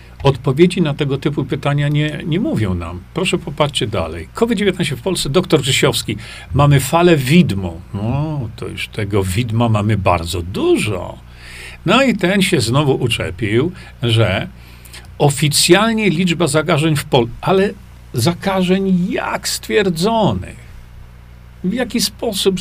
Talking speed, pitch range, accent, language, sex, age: 125 wpm, 110-180 Hz, native, Polish, male, 50-69